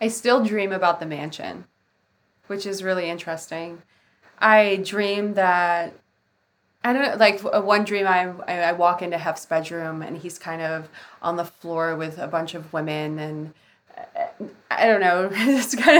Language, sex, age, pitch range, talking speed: English, female, 20-39, 165-210 Hz, 160 wpm